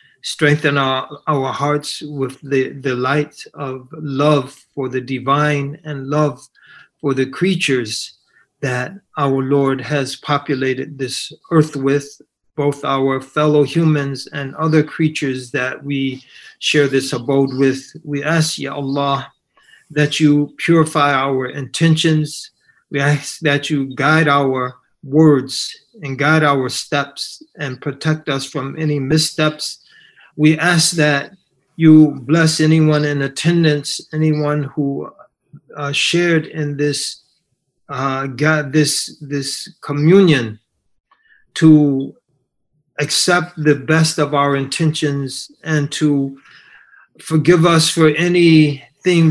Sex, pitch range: male, 140-155 Hz